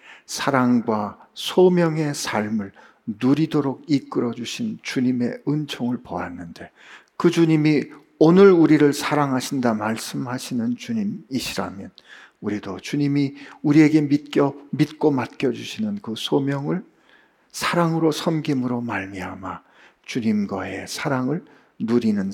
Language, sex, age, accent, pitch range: Korean, male, 50-69, native, 115-155 Hz